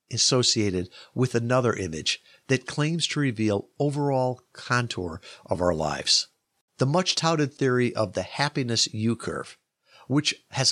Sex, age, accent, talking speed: male, 50-69, American, 135 wpm